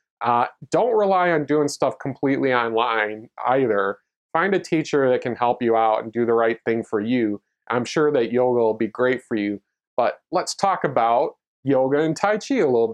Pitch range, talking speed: 115-150 Hz, 200 wpm